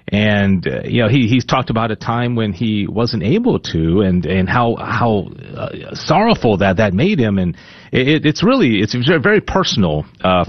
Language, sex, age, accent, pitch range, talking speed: English, male, 40-59, American, 105-160 Hz, 190 wpm